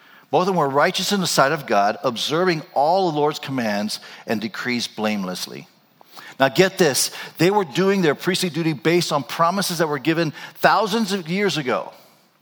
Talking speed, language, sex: 180 wpm, English, male